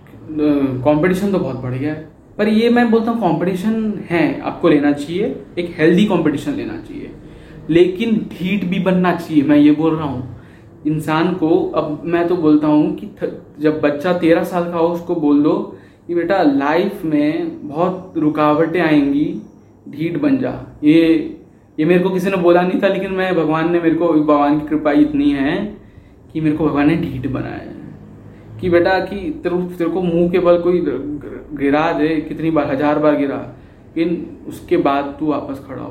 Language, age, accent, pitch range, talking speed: Hindi, 20-39, native, 145-185 Hz, 180 wpm